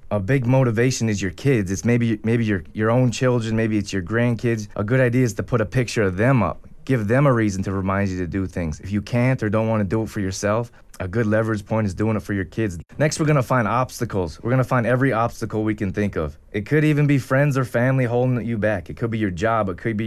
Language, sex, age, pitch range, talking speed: English, male, 20-39, 100-125 Hz, 270 wpm